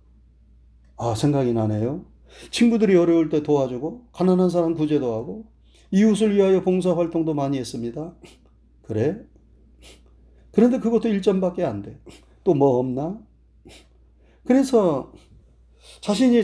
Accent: native